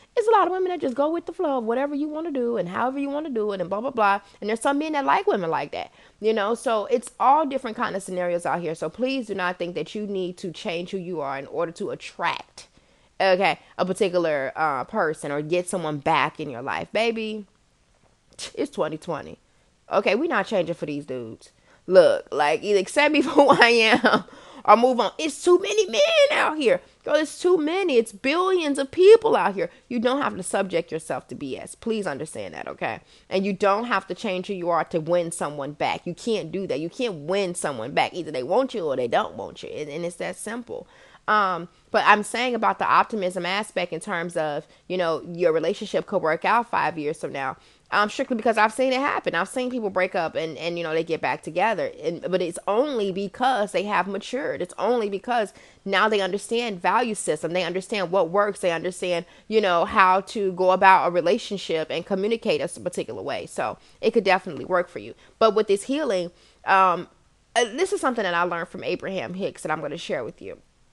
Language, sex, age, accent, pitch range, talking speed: English, female, 20-39, American, 175-250 Hz, 225 wpm